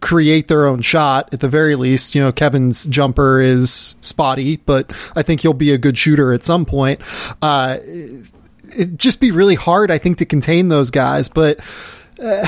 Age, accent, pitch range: 30-49, American, 145-180 Hz